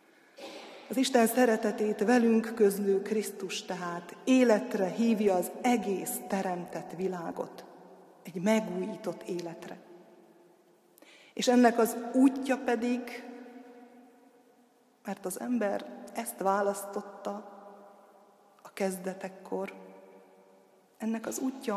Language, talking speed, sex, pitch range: Hungarian, 85 wpm, female, 190-245 Hz